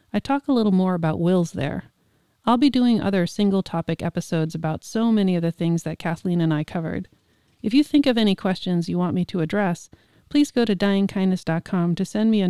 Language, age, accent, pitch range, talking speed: English, 30-49, American, 170-210 Hz, 210 wpm